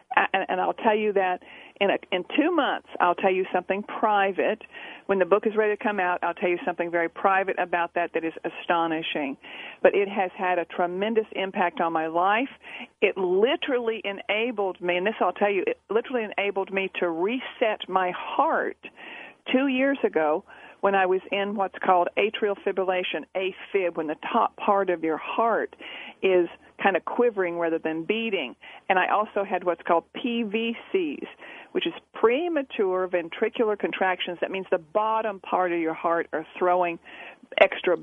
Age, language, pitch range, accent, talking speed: 50-69, English, 175-220 Hz, American, 170 wpm